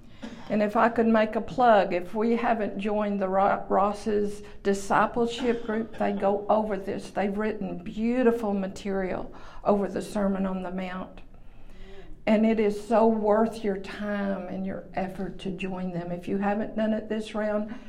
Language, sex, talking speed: English, female, 165 wpm